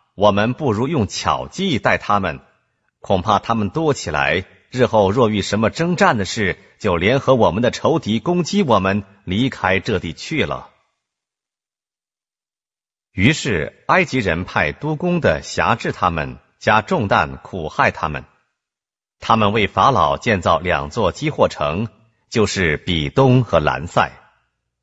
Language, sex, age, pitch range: Korean, male, 50-69, 95-130 Hz